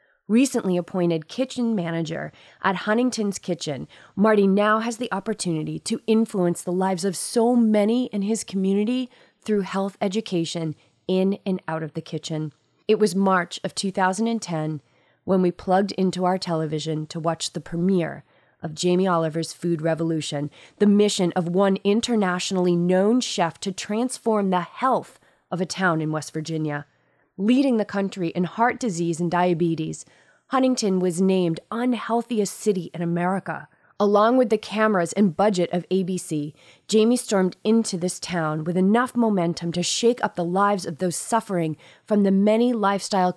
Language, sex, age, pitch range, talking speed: English, female, 30-49, 170-210 Hz, 155 wpm